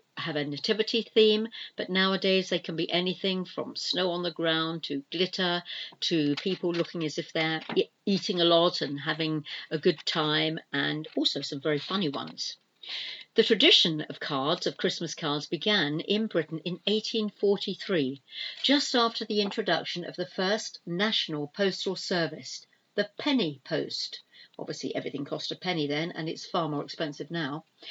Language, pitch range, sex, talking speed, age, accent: English, 155-200 Hz, female, 160 wpm, 50-69, British